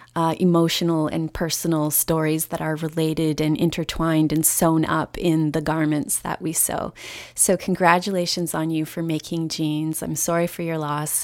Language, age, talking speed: English, 20-39, 165 wpm